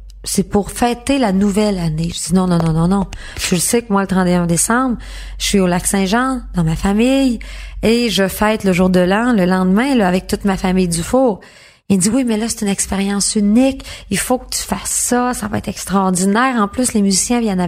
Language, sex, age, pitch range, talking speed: French, female, 30-49, 190-245 Hz, 225 wpm